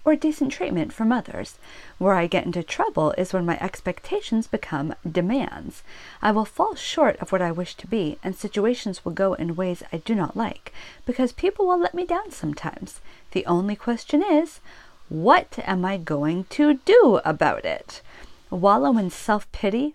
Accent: American